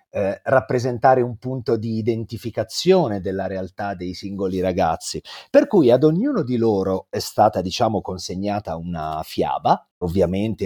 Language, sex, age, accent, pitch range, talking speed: Italian, male, 40-59, native, 90-125 Hz, 130 wpm